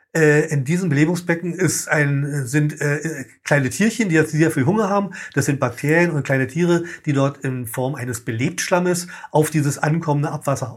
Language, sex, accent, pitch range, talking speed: German, male, German, 140-175 Hz, 160 wpm